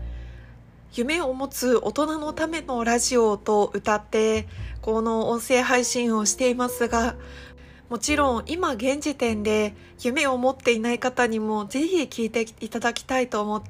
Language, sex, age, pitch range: Japanese, female, 20-39, 220-265 Hz